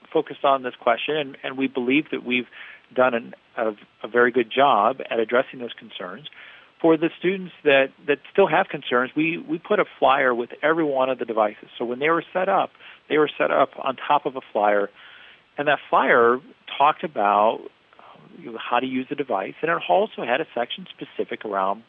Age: 40-59